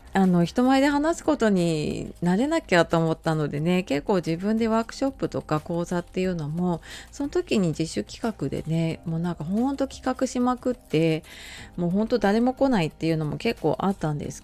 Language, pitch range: Japanese, 160-245 Hz